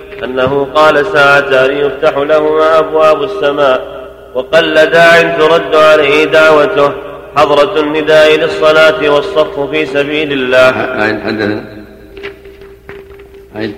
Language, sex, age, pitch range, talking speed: Arabic, male, 40-59, 145-160 Hz, 95 wpm